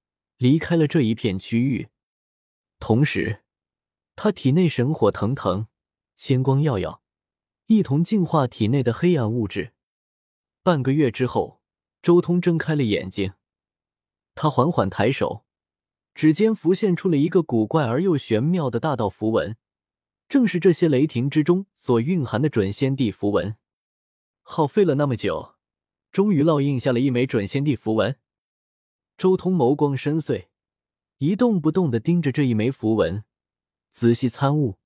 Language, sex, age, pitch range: Chinese, male, 20-39, 110-165 Hz